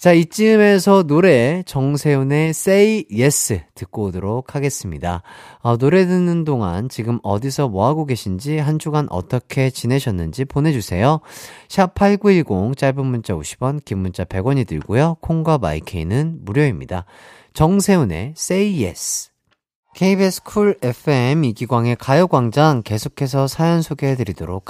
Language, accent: Korean, native